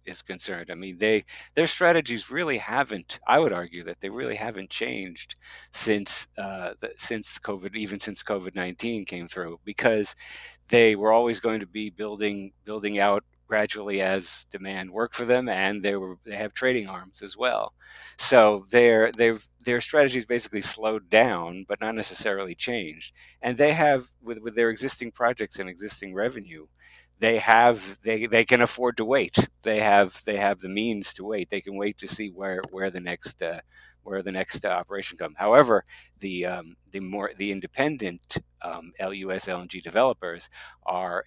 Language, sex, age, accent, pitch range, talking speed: English, male, 50-69, American, 95-115 Hz, 175 wpm